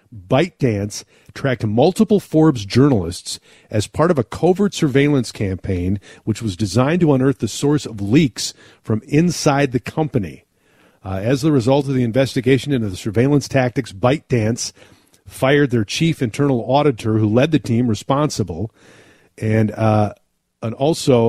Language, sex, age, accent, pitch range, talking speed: English, male, 40-59, American, 110-135 Hz, 145 wpm